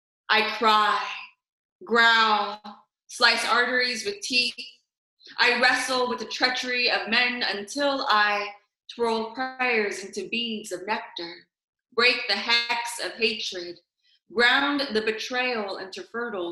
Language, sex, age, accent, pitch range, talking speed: English, female, 20-39, American, 185-245 Hz, 115 wpm